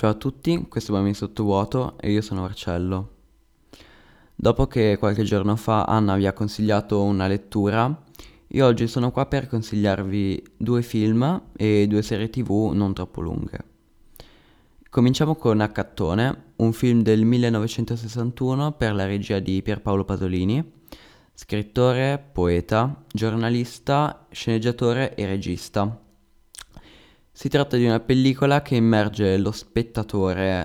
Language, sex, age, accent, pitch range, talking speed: Italian, male, 20-39, native, 100-120 Hz, 125 wpm